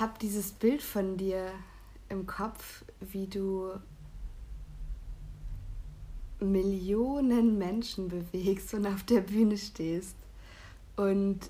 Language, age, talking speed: German, 60-79, 95 wpm